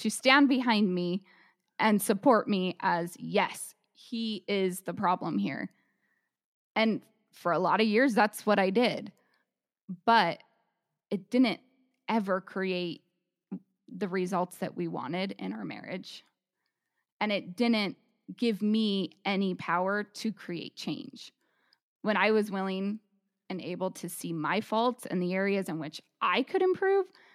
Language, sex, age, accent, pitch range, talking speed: English, female, 20-39, American, 180-215 Hz, 145 wpm